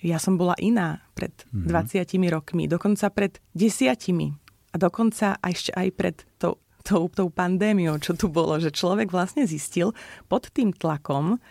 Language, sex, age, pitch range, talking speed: Slovak, female, 30-49, 165-215 Hz, 155 wpm